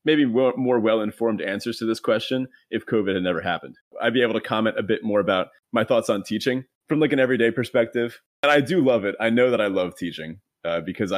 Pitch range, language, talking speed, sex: 105-135 Hz, English, 235 wpm, male